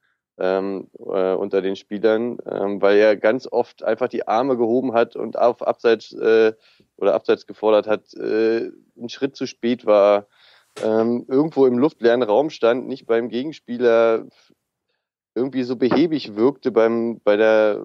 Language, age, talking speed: German, 20-39, 140 wpm